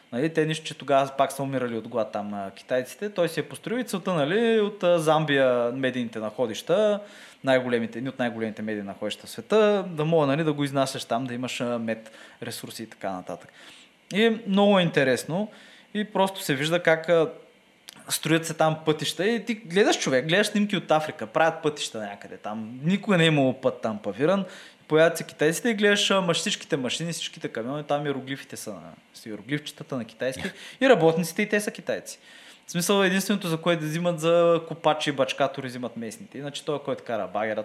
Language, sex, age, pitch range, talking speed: Bulgarian, male, 20-39, 120-175 Hz, 185 wpm